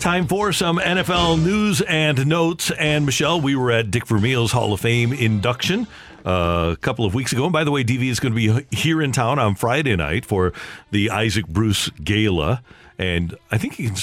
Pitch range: 100-135 Hz